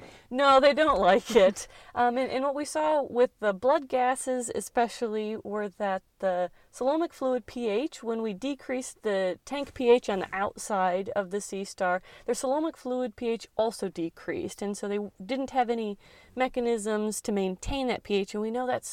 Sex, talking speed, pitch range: female, 180 wpm, 185-245 Hz